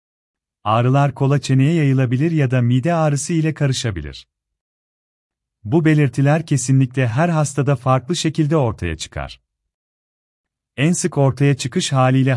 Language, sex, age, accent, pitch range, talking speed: Turkish, male, 40-59, native, 95-145 Hz, 115 wpm